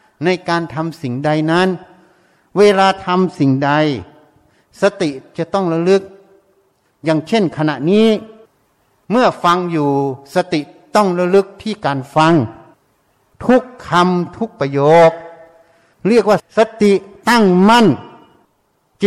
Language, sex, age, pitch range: Thai, male, 60-79, 160-215 Hz